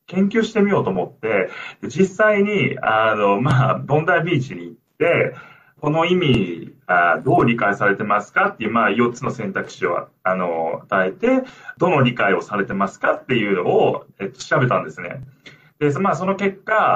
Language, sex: Japanese, male